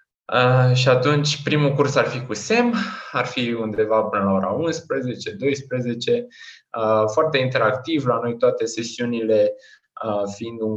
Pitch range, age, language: 100-160 Hz, 20-39, Romanian